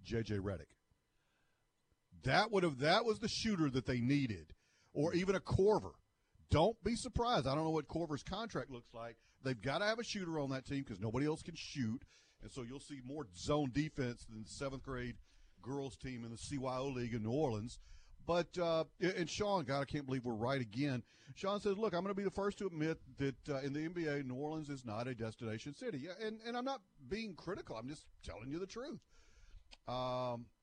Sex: male